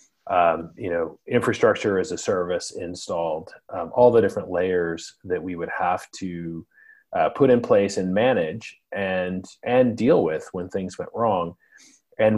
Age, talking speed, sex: 30-49, 160 wpm, male